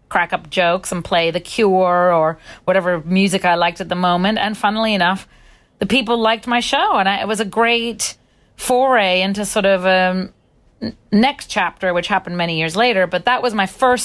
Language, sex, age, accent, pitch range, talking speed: English, female, 40-59, American, 175-230 Hz, 200 wpm